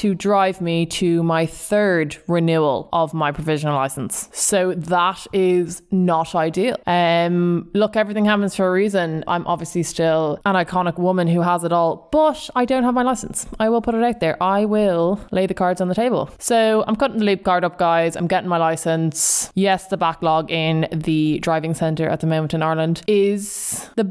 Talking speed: 195 wpm